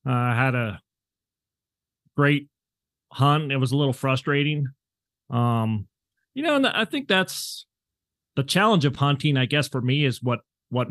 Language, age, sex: English, 40-59, male